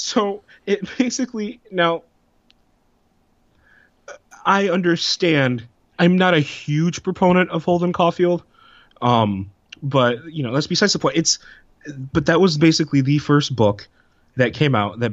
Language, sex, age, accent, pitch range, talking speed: English, male, 20-39, American, 105-145 Hz, 135 wpm